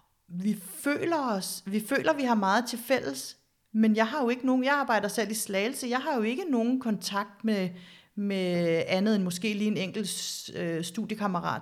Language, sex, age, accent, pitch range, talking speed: Danish, female, 40-59, native, 180-230 Hz, 185 wpm